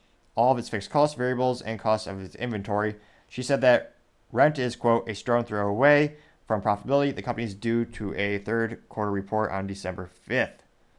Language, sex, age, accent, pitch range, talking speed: English, male, 20-39, American, 100-120 Hz, 190 wpm